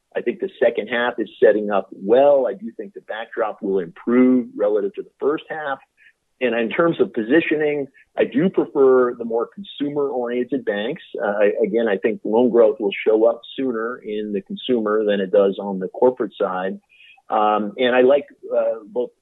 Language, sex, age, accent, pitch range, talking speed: English, male, 50-69, American, 105-150 Hz, 185 wpm